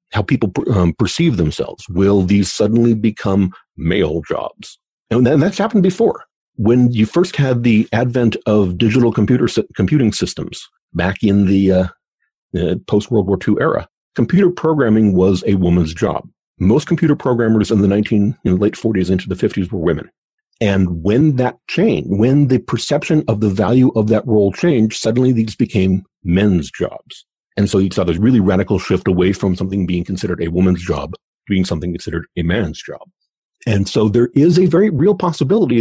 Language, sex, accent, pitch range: English, male, American, 95-125 Hz